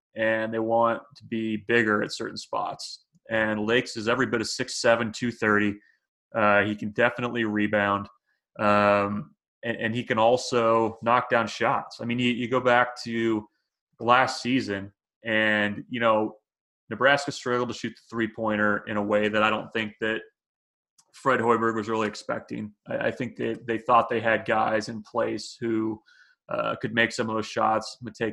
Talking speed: 175 wpm